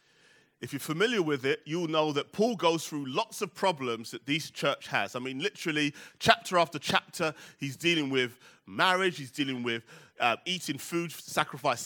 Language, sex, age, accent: English, male, 30-49, British